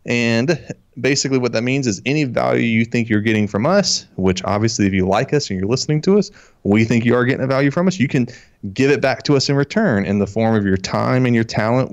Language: English